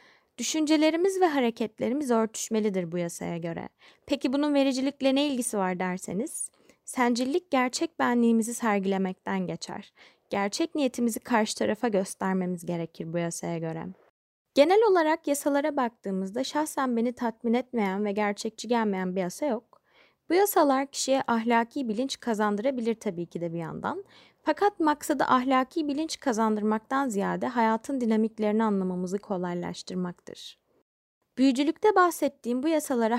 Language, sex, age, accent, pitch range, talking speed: Turkish, female, 20-39, native, 205-275 Hz, 125 wpm